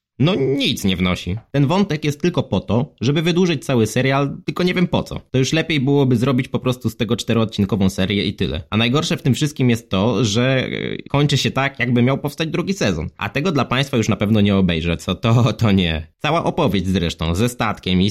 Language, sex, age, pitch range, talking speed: Polish, male, 20-39, 100-135 Hz, 220 wpm